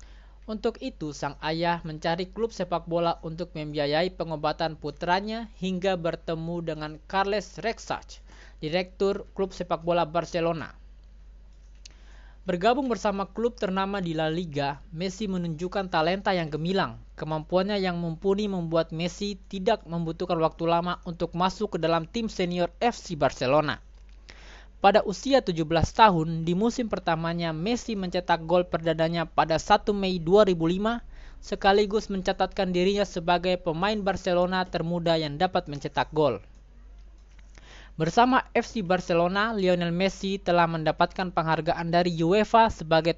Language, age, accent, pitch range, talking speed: Indonesian, 20-39, native, 160-195 Hz, 120 wpm